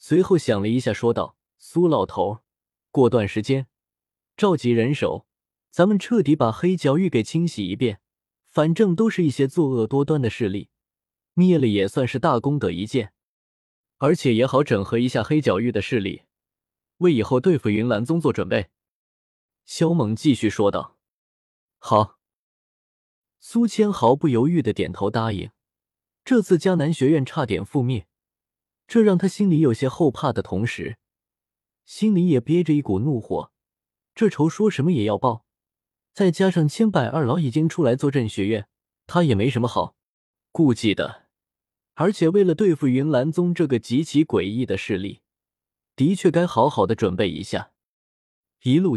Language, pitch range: Chinese, 110-170 Hz